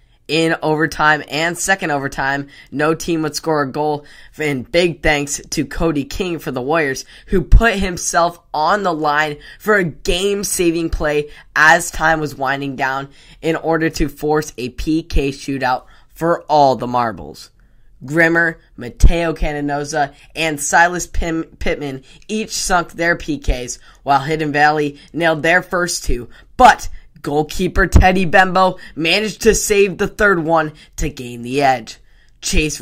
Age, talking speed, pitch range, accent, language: 10-29, 145 wpm, 140-175 Hz, American, English